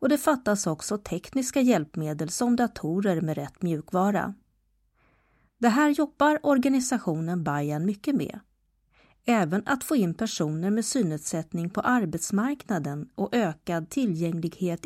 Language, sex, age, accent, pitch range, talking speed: Swedish, female, 40-59, native, 180-255 Hz, 120 wpm